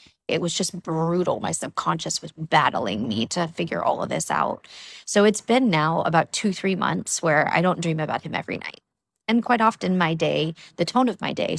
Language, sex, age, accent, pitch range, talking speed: English, female, 30-49, American, 155-195 Hz, 210 wpm